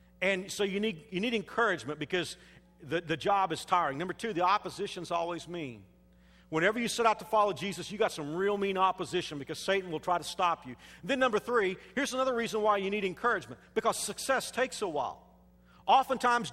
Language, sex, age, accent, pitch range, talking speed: English, male, 50-69, American, 145-200 Hz, 205 wpm